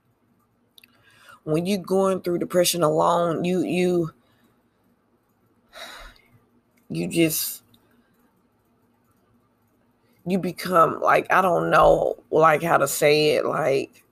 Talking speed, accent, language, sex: 95 wpm, American, English, female